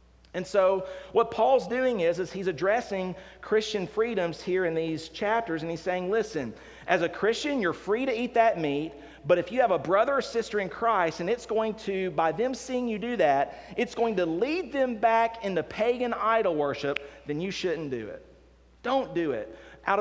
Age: 40-59